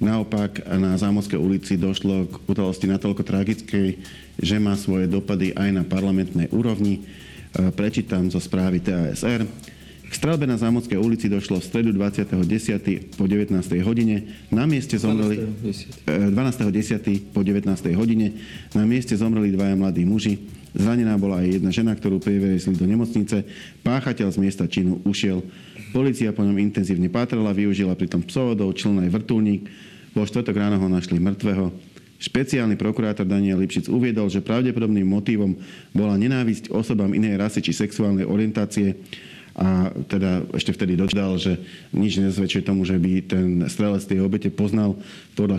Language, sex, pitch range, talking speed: Slovak, male, 95-105 Hz, 140 wpm